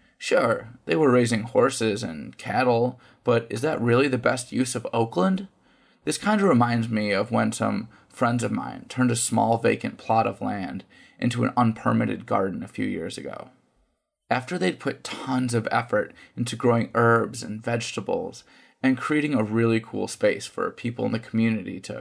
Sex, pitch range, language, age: male, 110-130 Hz, English, 20-39